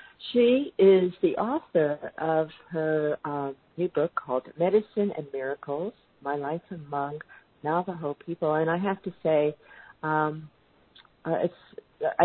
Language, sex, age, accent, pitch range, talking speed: English, female, 50-69, American, 140-175 Hz, 120 wpm